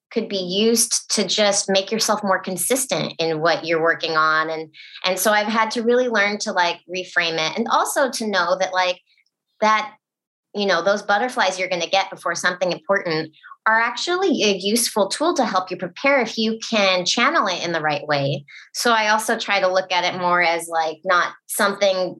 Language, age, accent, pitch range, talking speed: English, 30-49, American, 165-205 Hz, 200 wpm